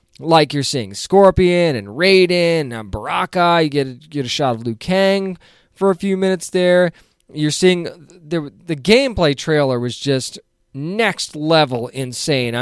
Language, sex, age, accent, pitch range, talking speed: English, male, 20-39, American, 130-170 Hz, 155 wpm